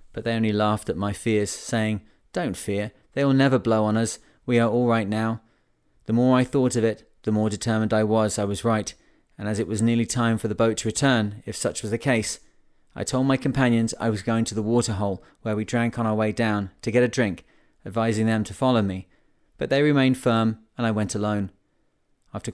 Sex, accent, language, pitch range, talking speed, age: male, British, English, 105-120 Hz, 230 wpm, 30-49